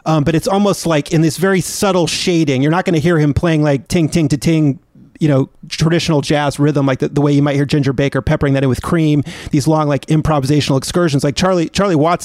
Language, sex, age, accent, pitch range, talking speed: English, male, 30-49, American, 145-170 Hz, 245 wpm